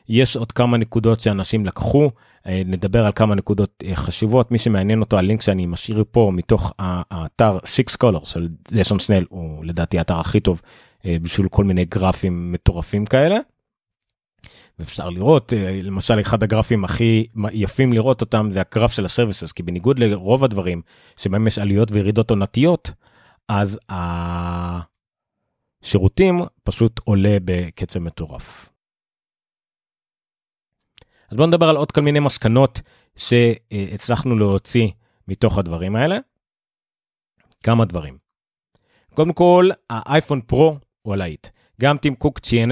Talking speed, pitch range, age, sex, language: 125 wpm, 95-120 Hz, 30-49, male, Hebrew